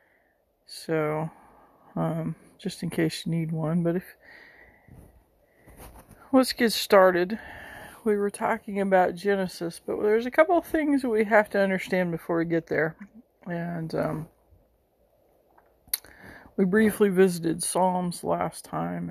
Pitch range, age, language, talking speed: 165-200 Hz, 40-59, English, 130 wpm